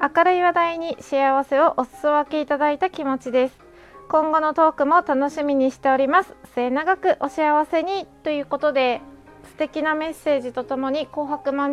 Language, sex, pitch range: Japanese, female, 275-350 Hz